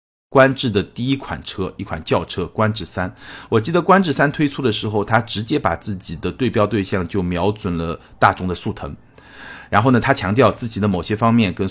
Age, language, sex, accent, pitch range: 50-69, Chinese, male, native, 95-135 Hz